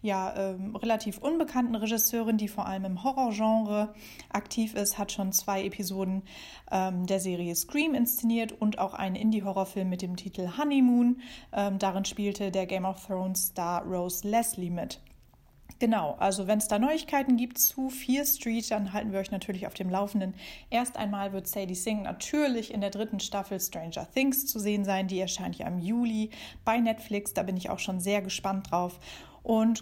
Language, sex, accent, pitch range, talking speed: German, female, German, 195-235 Hz, 175 wpm